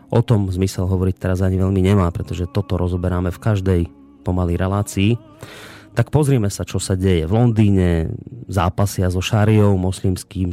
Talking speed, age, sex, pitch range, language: 155 wpm, 30-49, male, 95-110 Hz, Slovak